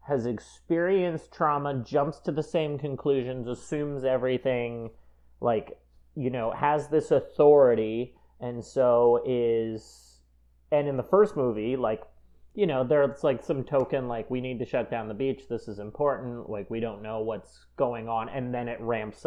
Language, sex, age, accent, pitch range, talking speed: English, male, 30-49, American, 105-130 Hz, 165 wpm